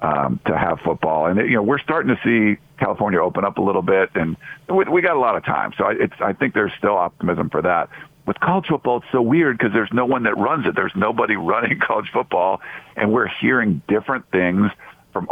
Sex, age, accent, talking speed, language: male, 50-69, American, 230 wpm, English